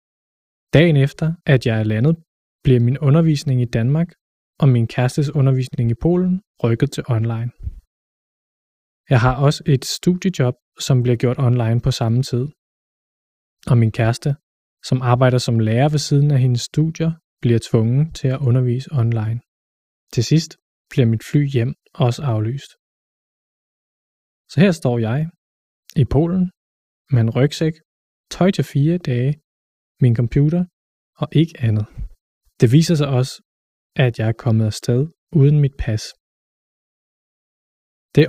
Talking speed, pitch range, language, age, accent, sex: 140 wpm, 120-155 Hz, Danish, 20-39, native, male